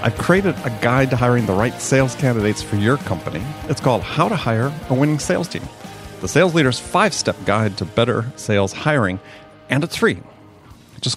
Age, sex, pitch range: 40-59, male, 110-150 Hz